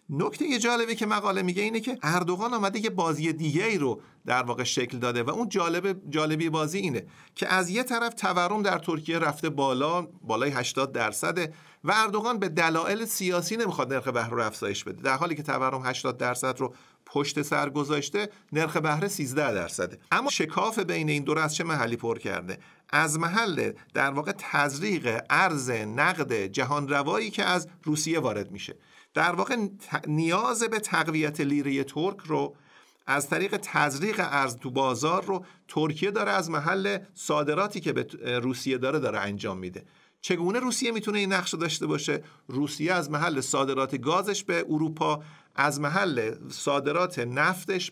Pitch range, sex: 140-185 Hz, male